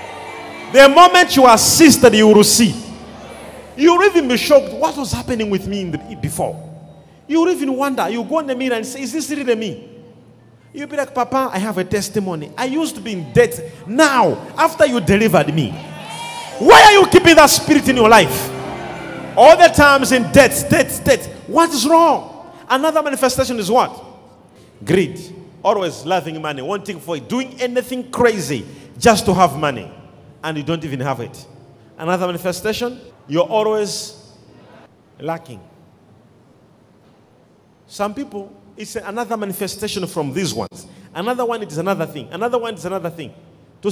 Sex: male